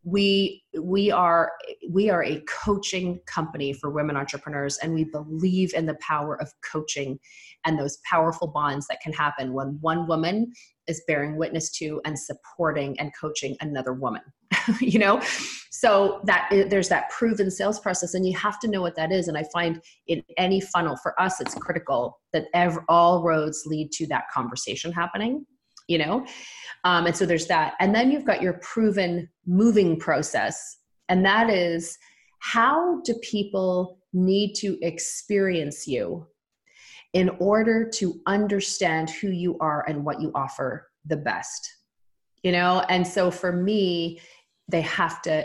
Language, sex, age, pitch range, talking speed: English, female, 30-49, 155-190 Hz, 160 wpm